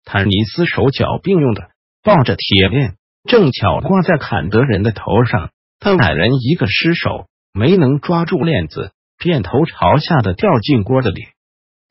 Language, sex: Chinese, male